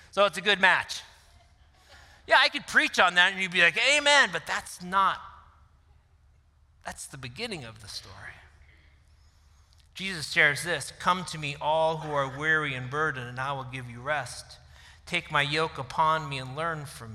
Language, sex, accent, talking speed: English, male, American, 180 wpm